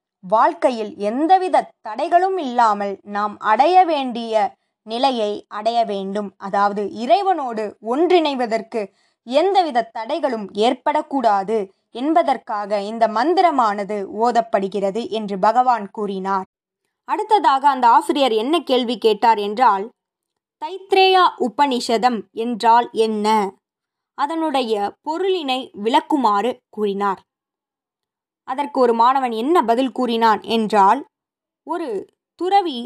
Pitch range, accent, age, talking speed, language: 215-310 Hz, native, 20-39, 85 wpm, Tamil